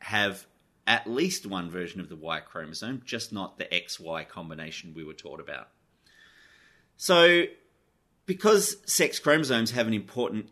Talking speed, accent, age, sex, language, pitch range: 145 wpm, Australian, 30-49, male, English, 85-115 Hz